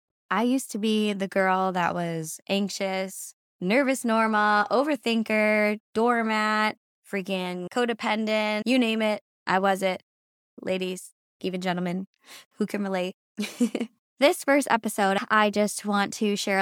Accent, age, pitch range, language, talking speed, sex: American, 20-39, 180-215 Hz, English, 125 wpm, female